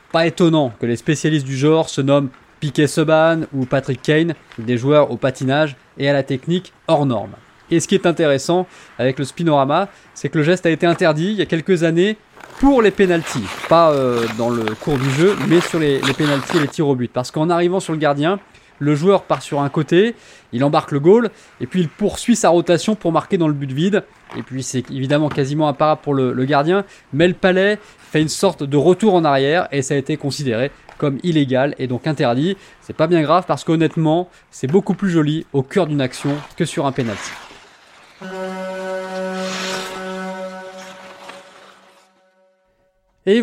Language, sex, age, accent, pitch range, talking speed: French, male, 20-39, French, 140-180 Hz, 195 wpm